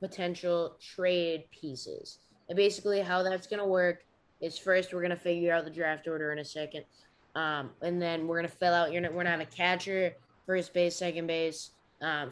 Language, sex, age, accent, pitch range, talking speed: English, female, 20-39, American, 165-190 Hz, 200 wpm